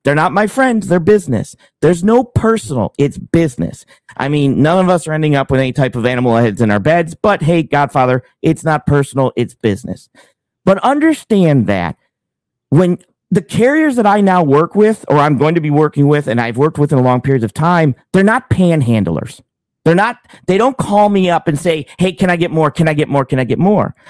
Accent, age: American, 40-59